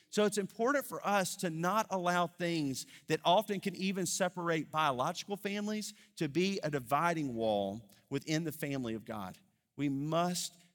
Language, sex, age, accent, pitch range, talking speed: English, male, 40-59, American, 150-210 Hz, 155 wpm